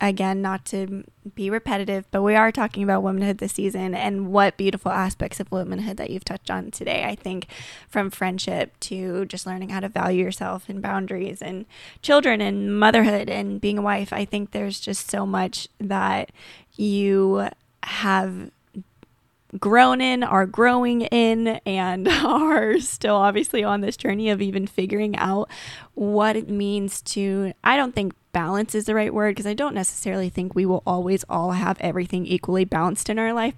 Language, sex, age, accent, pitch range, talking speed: English, female, 20-39, American, 190-210 Hz, 175 wpm